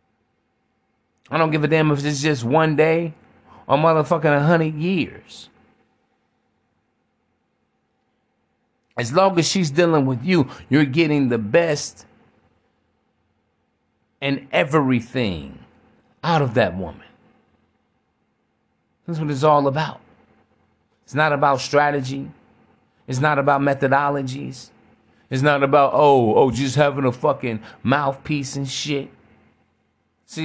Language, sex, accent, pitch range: English, male, American, 130-160 Hz